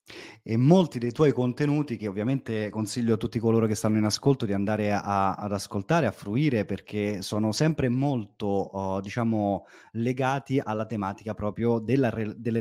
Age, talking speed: 30-49, 150 wpm